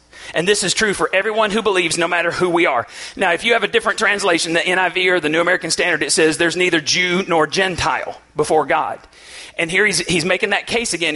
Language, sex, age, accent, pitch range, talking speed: English, male, 40-59, American, 175-225 Hz, 235 wpm